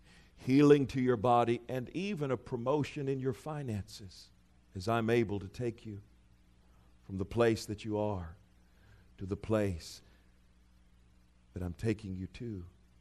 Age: 50-69